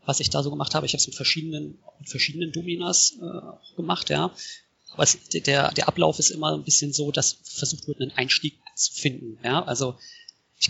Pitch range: 130-165 Hz